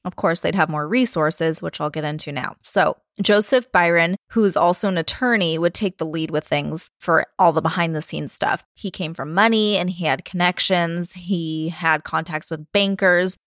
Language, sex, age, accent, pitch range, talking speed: English, female, 20-39, American, 160-195 Hz, 200 wpm